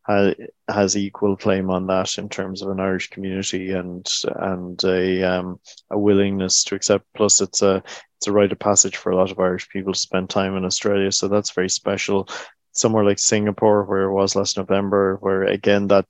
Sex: male